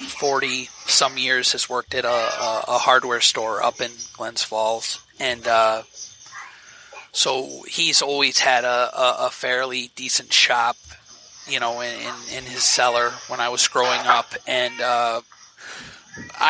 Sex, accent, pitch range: male, American, 120-130 Hz